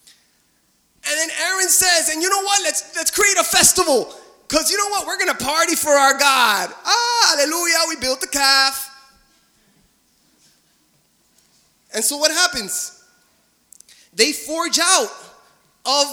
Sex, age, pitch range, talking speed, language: male, 20-39, 260-340 Hz, 140 wpm, English